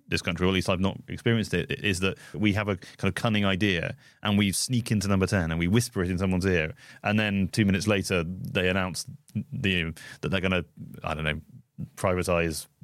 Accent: British